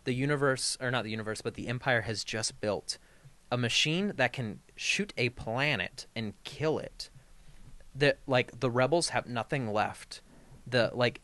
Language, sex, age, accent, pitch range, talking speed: English, male, 30-49, American, 105-135 Hz, 165 wpm